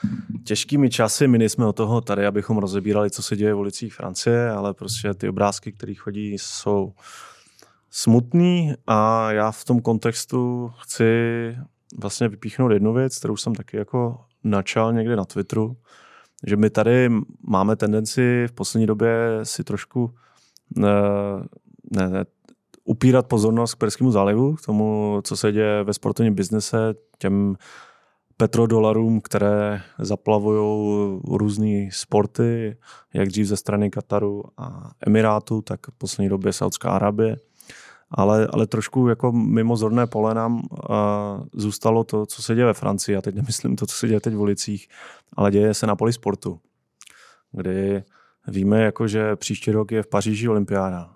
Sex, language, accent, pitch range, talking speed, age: male, Czech, native, 105-115 Hz, 150 wpm, 20-39